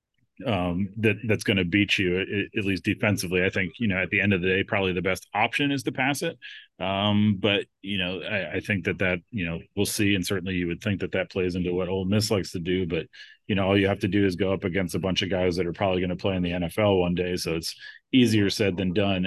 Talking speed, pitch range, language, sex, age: 280 wpm, 90-105 Hz, English, male, 30-49